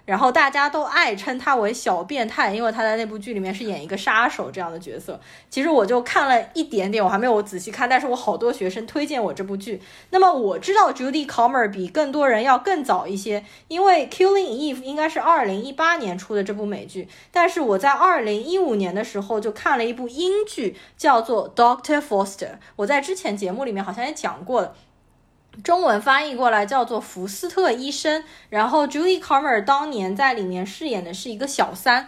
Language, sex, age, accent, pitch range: Chinese, female, 20-39, native, 195-285 Hz